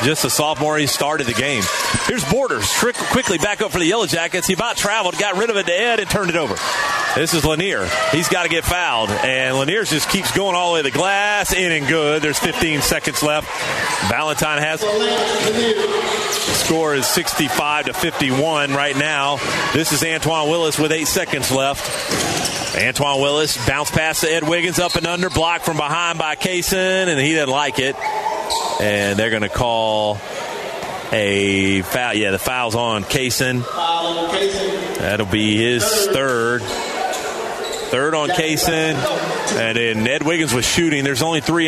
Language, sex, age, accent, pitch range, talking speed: English, male, 40-59, American, 130-170 Hz, 175 wpm